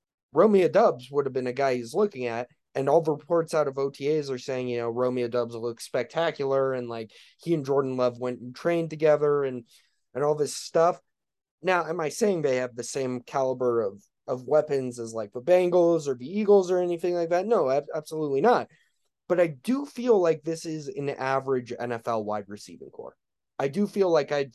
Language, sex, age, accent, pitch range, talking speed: English, male, 20-39, American, 125-170 Hz, 210 wpm